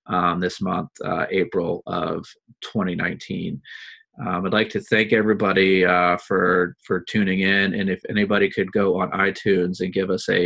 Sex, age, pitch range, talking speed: male, 30-49, 90-105 Hz, 165 wpm